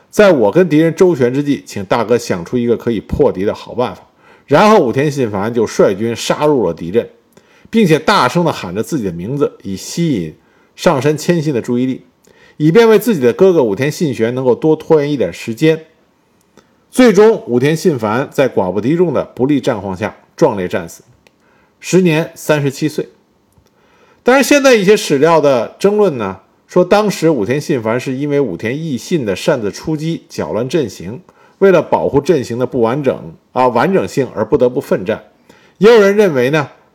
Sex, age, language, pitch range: male, 50-69, Chinese, 125-185 Hz